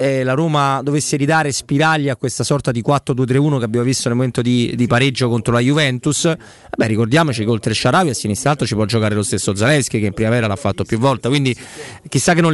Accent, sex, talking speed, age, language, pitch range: native, male, 220 wpm, 30-49, Italian, 110-135 Hz